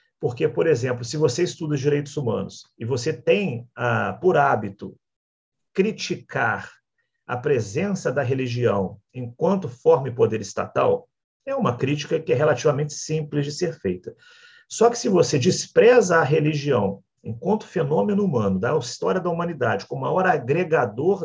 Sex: male